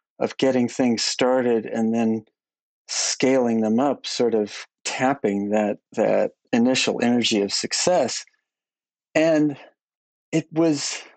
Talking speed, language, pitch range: 115 wpm, English, 130-155 Hz